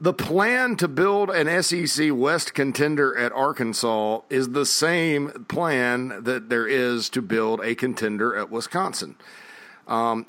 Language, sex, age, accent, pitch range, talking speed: English, male, 40-59, American, 115-145 Hz, 140 wpm